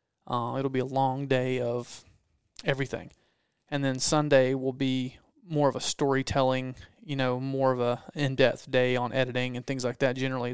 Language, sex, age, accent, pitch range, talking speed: English, male, 30-49, American, 130-140 Hz, 175 wpm